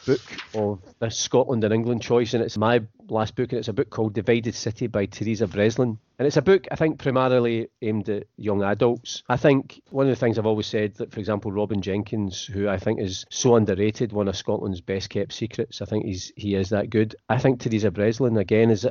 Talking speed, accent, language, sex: 225 wpm, British, English, male